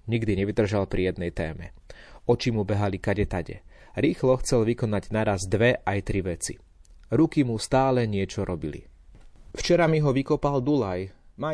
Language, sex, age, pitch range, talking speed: Slovak, male, 30-49, 95-125 Hz, 145 wpm